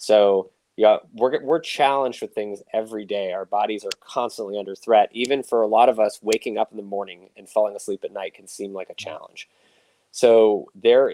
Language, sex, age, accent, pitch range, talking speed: English, male, 20-39, American, 100-130 Hz, 205 wpm